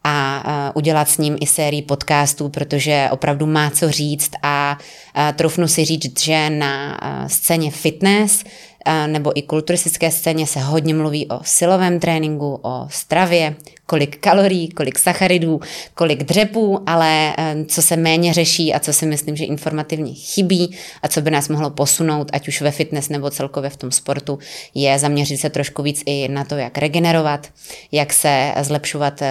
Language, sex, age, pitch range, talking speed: Czech, female, 20-39, 145-170 Hz, 160 wpm